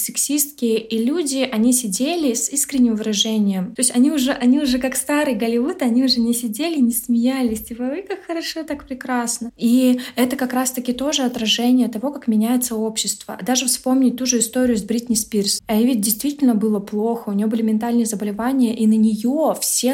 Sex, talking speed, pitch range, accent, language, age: female, 185 wpm, 210-250 Hz, native, Russian, 20-39